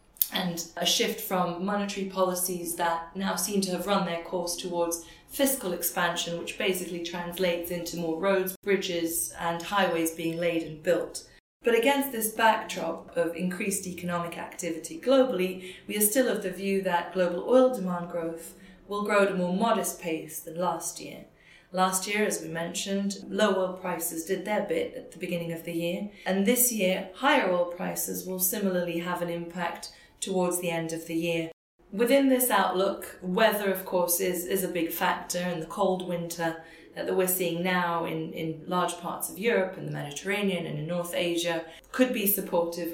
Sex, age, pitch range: female, 30-49, 170-195 Hz